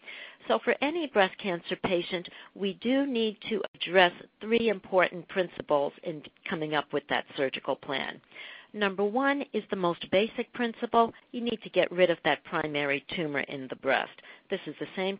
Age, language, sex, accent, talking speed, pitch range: 60-79, English, female, American, 175 wpm, 150-215 Hz